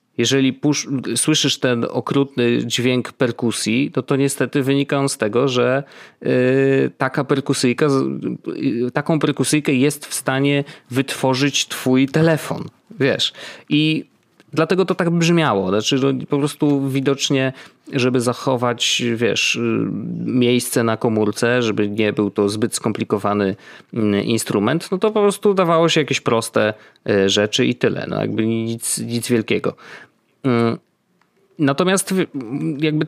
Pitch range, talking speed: 115-145 Hz, 120 wpm